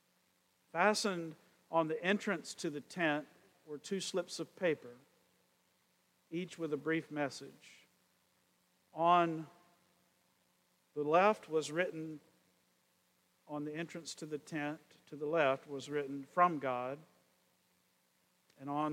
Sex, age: male, 50-69